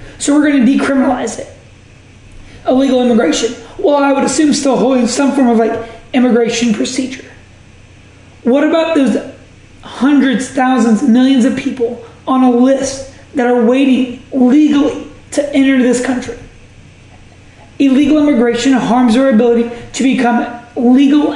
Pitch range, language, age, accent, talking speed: 235-275 Hz, English, 20-39, American, 130 wpm